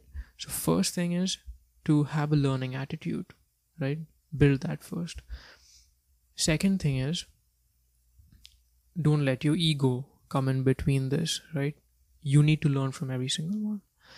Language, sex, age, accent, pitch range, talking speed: English, male, 20-39, Indian, 130-155 Hz, 140 wpm